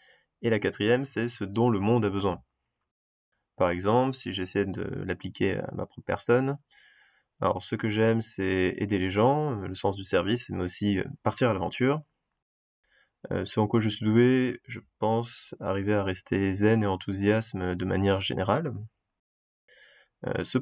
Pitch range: 95-115 Hz